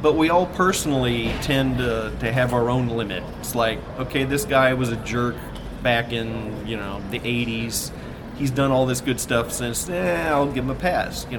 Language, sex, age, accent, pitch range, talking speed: English, male, 40-59, American, 110-135 Hz, 210 wpm